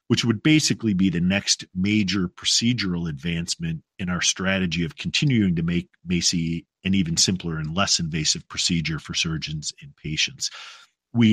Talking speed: 155 wpm